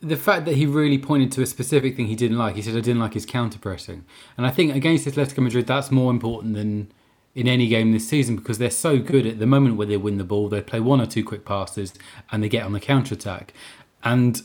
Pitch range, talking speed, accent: 105-125 Hz, 260 wpm, British